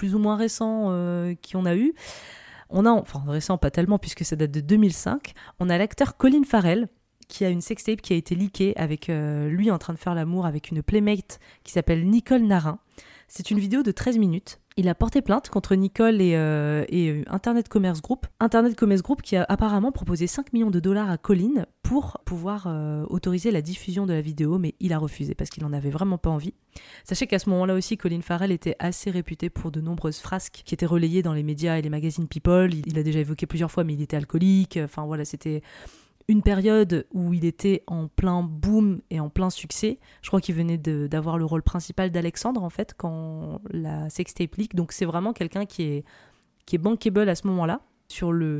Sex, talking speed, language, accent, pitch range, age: female, 220 wpm, French, French, 165-205 Hz, 20-39